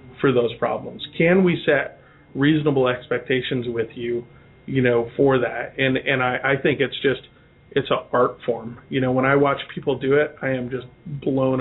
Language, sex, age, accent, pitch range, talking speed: English, male, 40-59, American, 130-150 Hz, 190 wpm